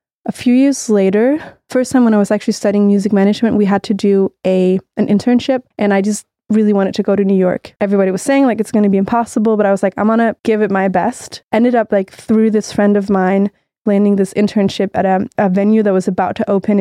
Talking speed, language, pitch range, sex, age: 250 wpm, English, 195-220 Hz, female, 20-39